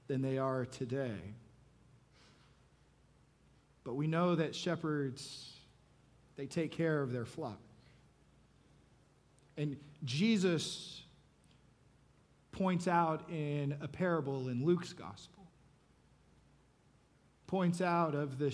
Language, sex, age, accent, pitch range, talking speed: English, male, 40-59, American, 135-175 Hz, 95 wpm